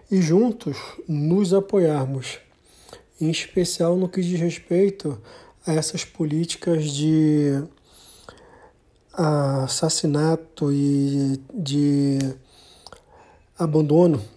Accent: Brazilian